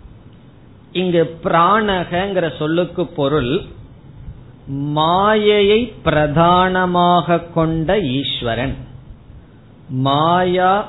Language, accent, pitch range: Tamil, native, 135-175 Hz